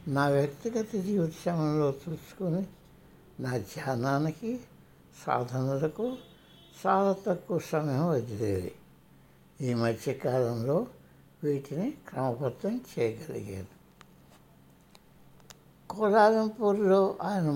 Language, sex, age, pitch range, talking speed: Hindi, male, 60-79, 130-180 Hz, 60 wpm